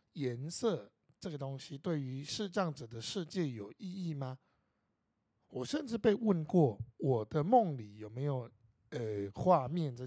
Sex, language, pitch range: male, Chinese, 125-165 Hz